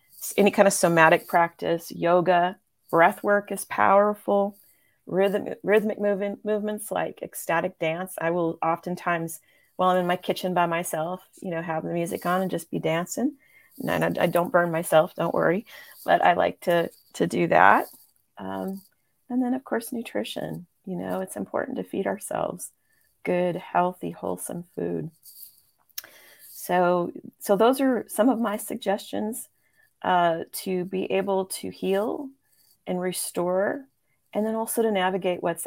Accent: American